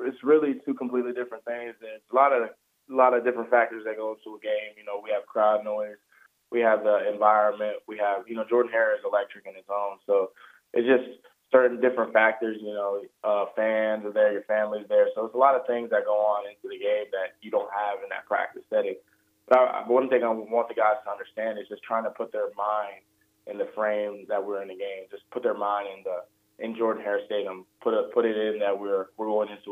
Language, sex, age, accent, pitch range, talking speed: English, male, 20-39, American, 105-130 Hz, 240 wpm